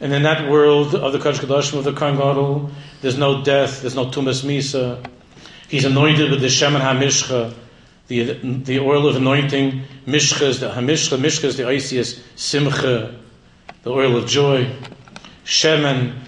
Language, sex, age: English, male, 50-69